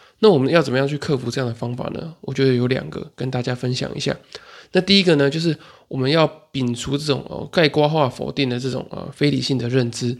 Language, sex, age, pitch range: Chinese, male, 20-39, 130-155 Hz